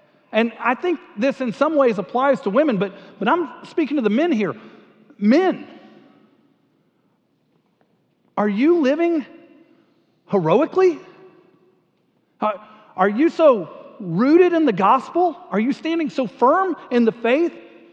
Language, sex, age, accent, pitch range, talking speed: English, male, 40-59, American, 190-300 Hz, 125 wpm